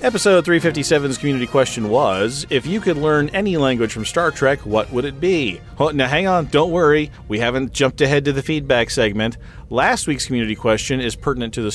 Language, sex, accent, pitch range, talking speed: English, male, American, 110-145 Hz, 200 wpm